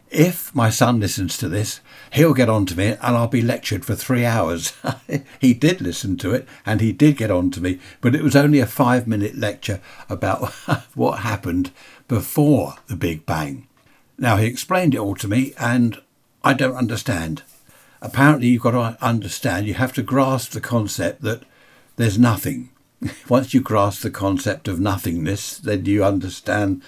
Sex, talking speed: male, 180 wpm